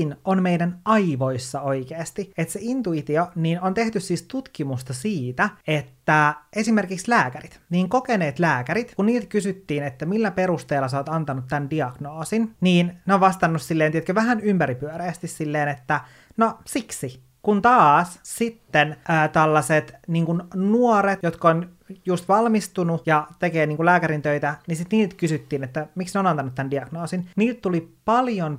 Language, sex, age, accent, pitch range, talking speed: Finnish, male, 30-49, native, 150-195 Hz, 150 wpm